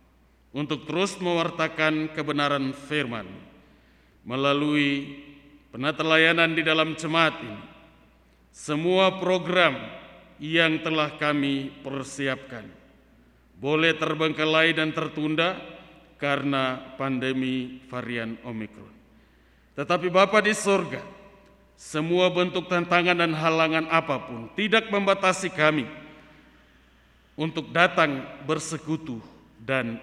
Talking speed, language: 85 wpm, Indonesian